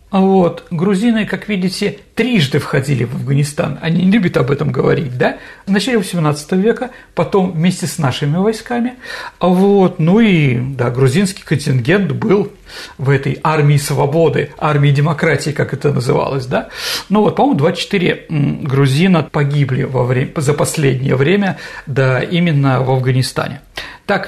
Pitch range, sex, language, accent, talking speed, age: 150-205 Hz, male, Russian, native, 140 wpm, 50-69